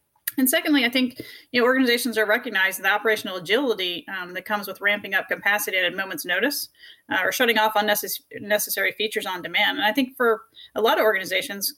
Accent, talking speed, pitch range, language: American, 205 wpm, 200-255 Hz, English